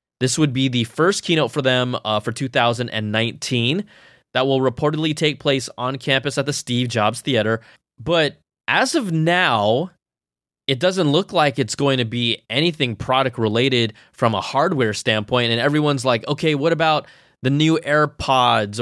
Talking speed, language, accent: 165 wpm, English, American